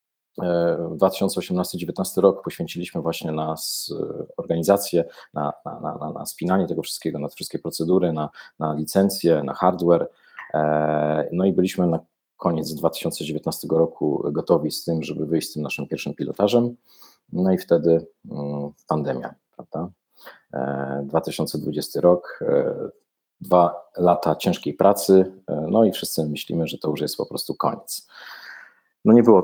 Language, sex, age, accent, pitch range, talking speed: Polish, male, 40-59, native, 75-90 Hz, 125 wpm